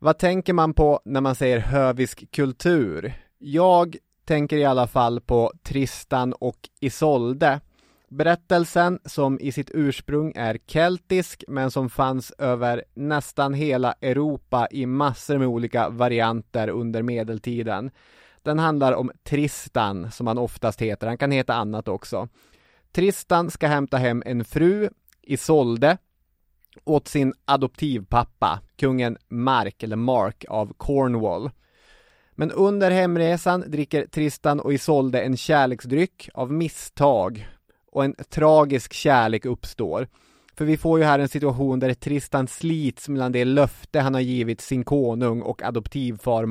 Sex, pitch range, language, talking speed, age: male, 120-150 Hz, English, 135 wpm, 20-39